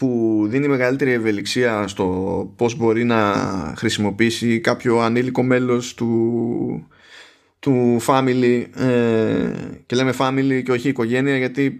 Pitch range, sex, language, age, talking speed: 105-135 Hz, male, Greek, 20-39, 110 wpm